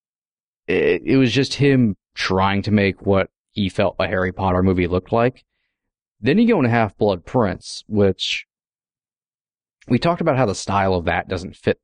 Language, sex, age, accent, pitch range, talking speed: English, male, 30-49, American, 95-125 Hz, 165 wpm